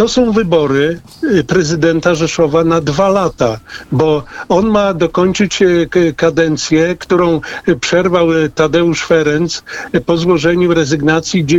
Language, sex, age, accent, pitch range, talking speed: Polish, male, 50-69, native, 160-185 Hz, 105 wpm